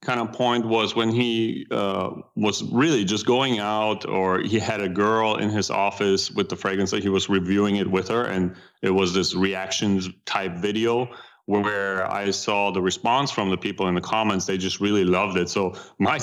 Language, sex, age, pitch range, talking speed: English, male, 30-49, 95-115 Hz, 205 wpm